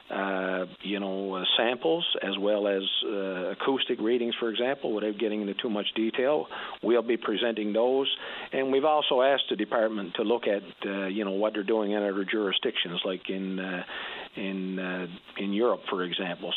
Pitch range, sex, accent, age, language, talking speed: 95-110 Hz, male, American, 50-69, English, 180 wpm